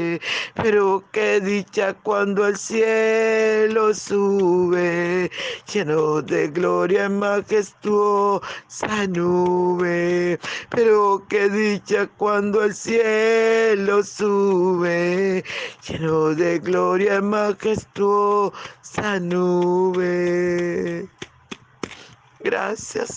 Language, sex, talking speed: Spanish, male, 70 wpm